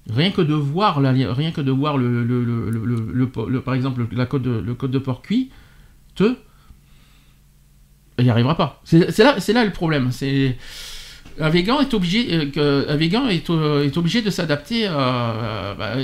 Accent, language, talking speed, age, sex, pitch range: French, French, 165 wpm, 50-69, male, 115-165 Hz